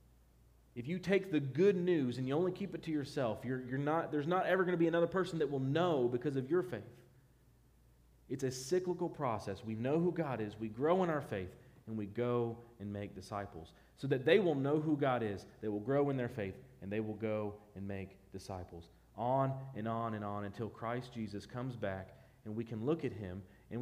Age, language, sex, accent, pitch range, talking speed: 40-59, English, male, American, 105-155 Hz, 225 wpm